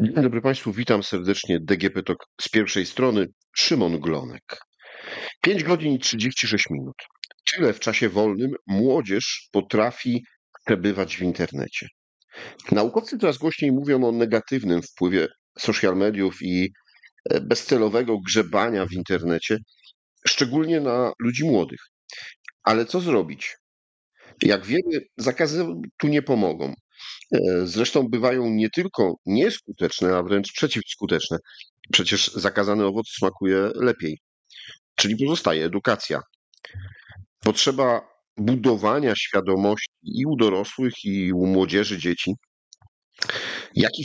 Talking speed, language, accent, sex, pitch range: 110 wpm, Polish, native, male, 95-120 Hz